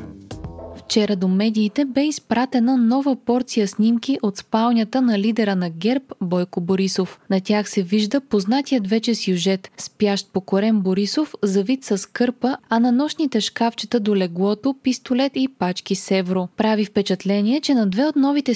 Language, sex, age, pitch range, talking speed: Bulgarian, female, 20-39, 200-255 Hz, 150 wpm